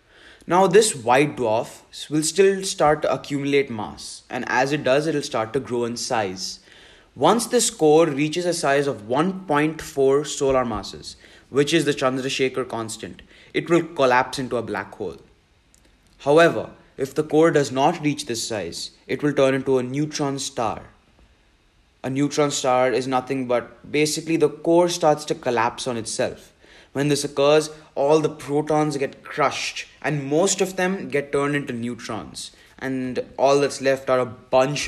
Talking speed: 165 wpm